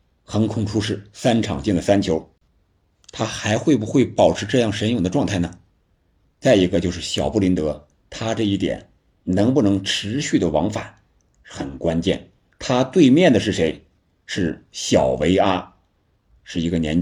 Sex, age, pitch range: male, 50-69, 85-105 Hz